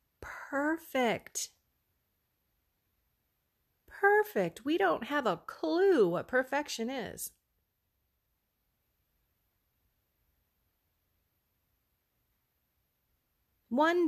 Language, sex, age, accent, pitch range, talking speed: English, female, 30-49, American, 160-220 Hz, 45 wpm